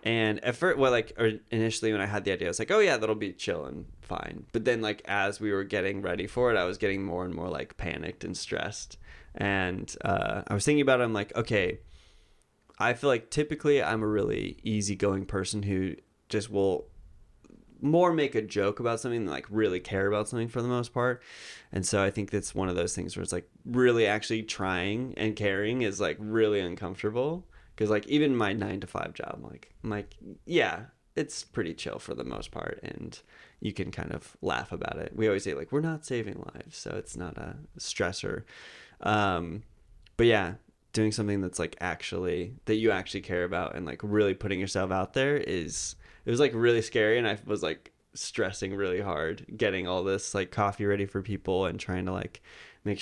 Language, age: English, 20-39